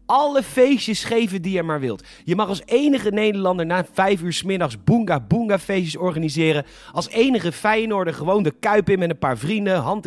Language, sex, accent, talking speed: Dutch, male, Dutch, 180 wpm